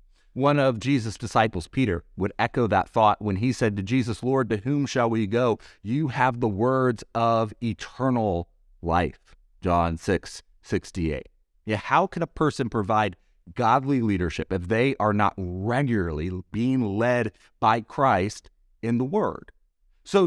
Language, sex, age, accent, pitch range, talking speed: English, male, 30-49, American, 100-140 Hz, 155 wpm